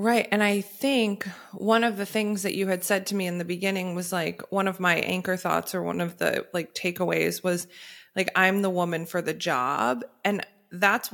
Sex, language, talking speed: female, English, 215 wpm